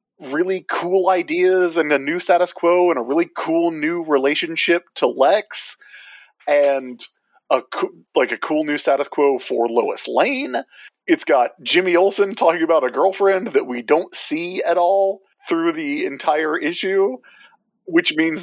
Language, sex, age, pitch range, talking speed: English, male, 30-49, 145-245 Hz, 155 wpm